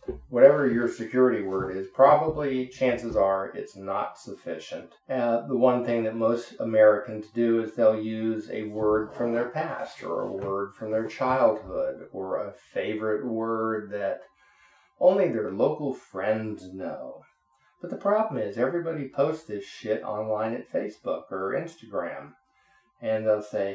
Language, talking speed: English, 150 wpm